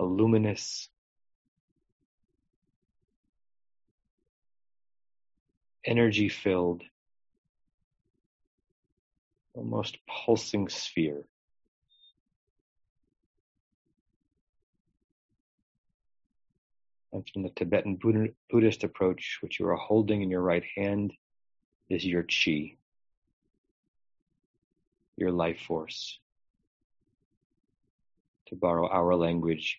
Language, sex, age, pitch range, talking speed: English, male, 40-59, 85-100 Hz, 60 wpm